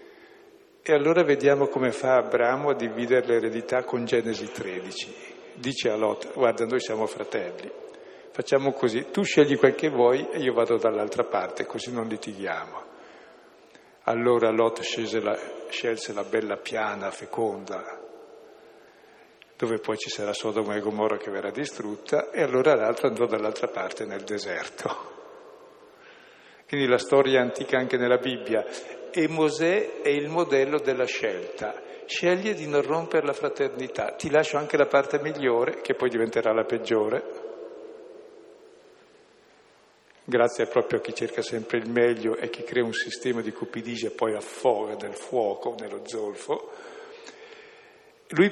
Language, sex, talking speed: Italian, male, 140 wpm